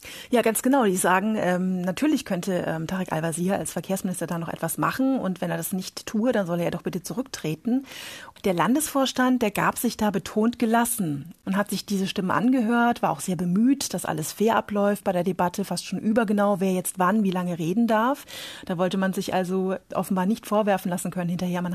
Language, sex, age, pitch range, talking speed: German, female, 30-49, 180-215 Hz, 215 wpm